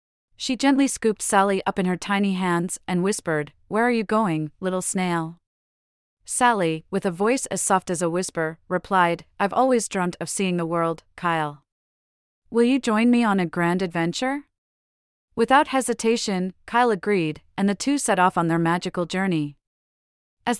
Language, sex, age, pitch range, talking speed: English, female, 30-49, 165-210 Hz, 165 wpm